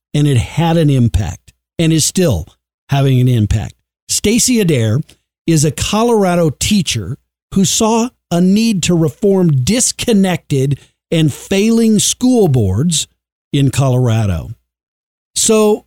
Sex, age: male, 50-69